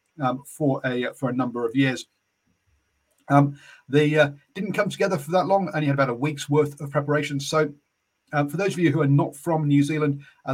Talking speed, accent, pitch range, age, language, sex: 215 wpm, British, 120-145 Hz, 40-59, English, male